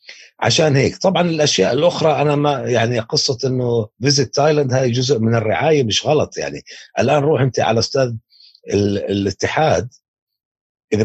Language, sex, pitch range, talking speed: Arabic, male, 120-170 Hz, 145 wpm